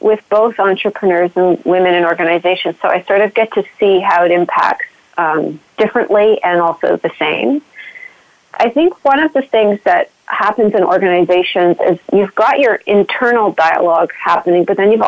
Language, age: English, 40-59